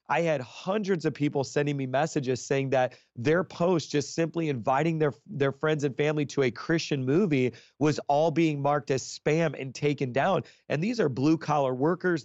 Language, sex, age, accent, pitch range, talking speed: English, male, 30-49, American, 135-155 Hz, 190 wpm